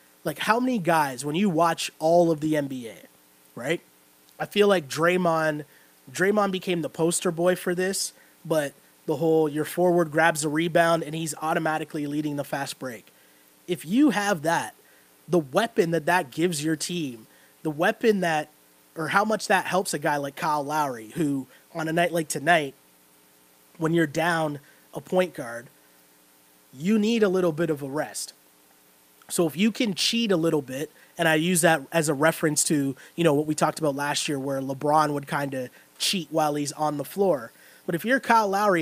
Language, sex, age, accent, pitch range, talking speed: English, male, 20-39, American, 140-180 Hz, 190 wpm